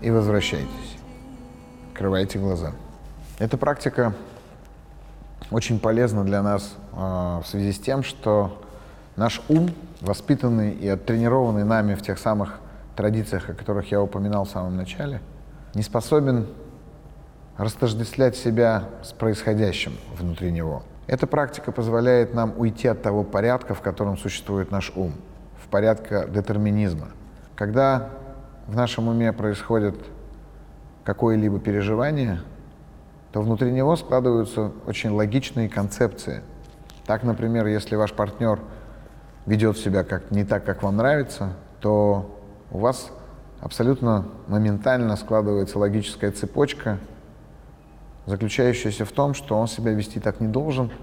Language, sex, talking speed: Russian, male, 120 wpm